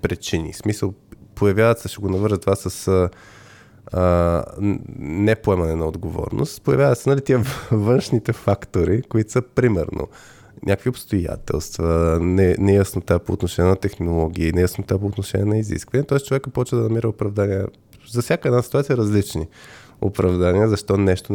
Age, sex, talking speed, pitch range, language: 20-39, male, 135 wpm, 95-120 Hz, Bulgarian